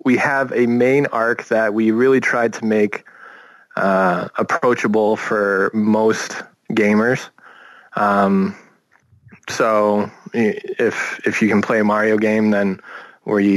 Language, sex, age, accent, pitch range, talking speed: English, male, 20-39, American, 105-120 Hz, 125 wpm